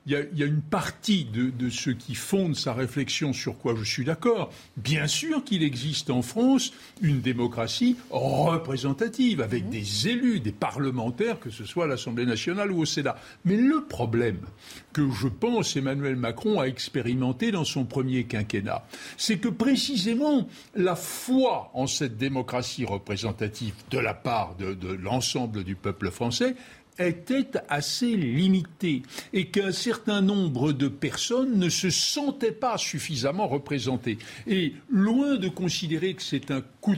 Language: French